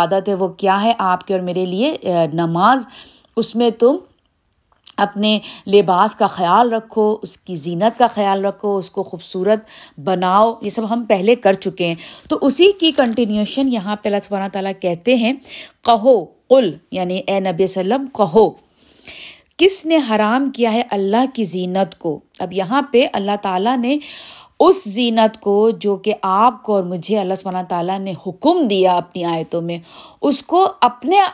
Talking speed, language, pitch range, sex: 175 wpm, Urdu, 190-255 Hz, female